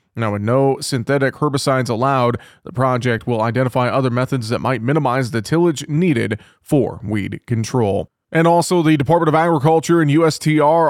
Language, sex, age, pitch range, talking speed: English, male, 30-49, 125-145 Hz, 160 wpm